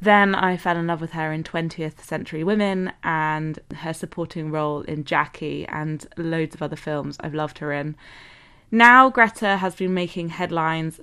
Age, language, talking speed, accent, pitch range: 20-39, English, 175 wpm, British, 155-185 Hz